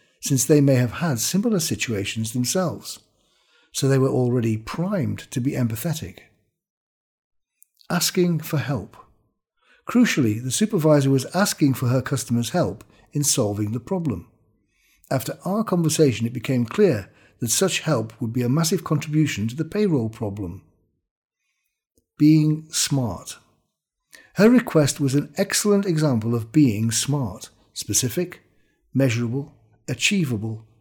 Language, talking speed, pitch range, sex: English, 125 wpm, 110-160 Hz, male